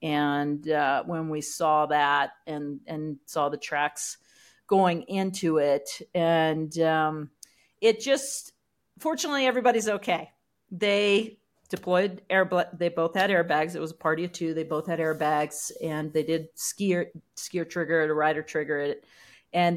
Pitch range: 150-185 Hz